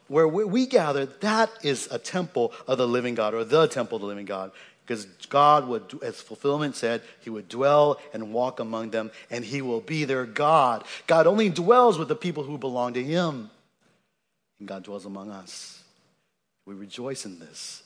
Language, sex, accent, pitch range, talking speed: English, male, American, 120-175 Hz, 190 wpm